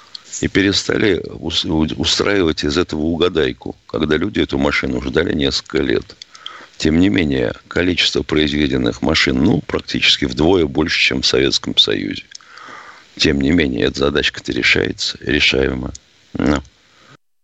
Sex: male